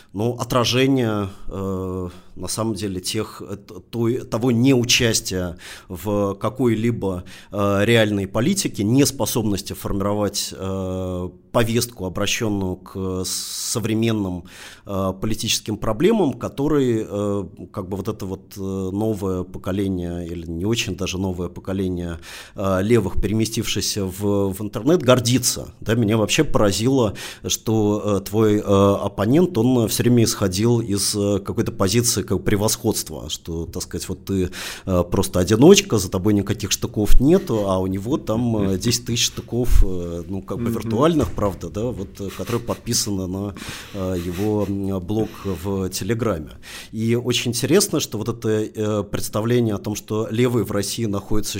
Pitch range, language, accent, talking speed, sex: 95-115 Hz, Russian, native, 130 wpm, male